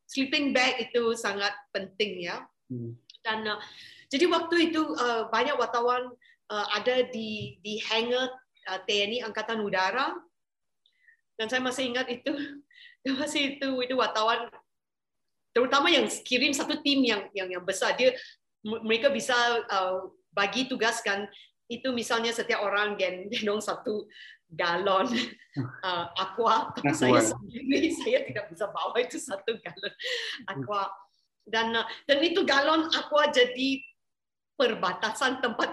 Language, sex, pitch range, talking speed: Indonesian, female, 195-265 Hz, 125 wpm